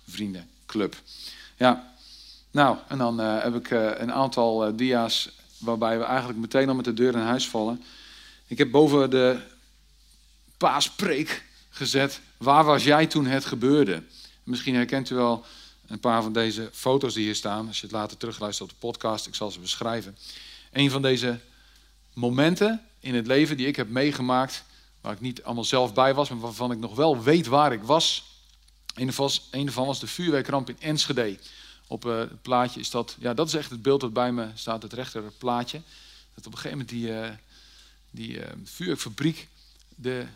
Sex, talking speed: male, 185 wpm